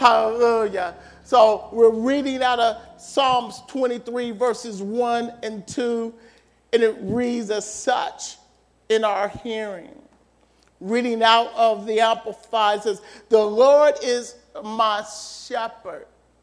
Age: 50-69